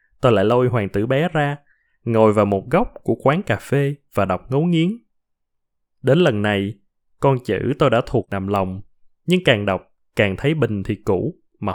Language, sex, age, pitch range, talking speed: Vietnamese, male, 20-39, 105-150 Hz, 195 wpm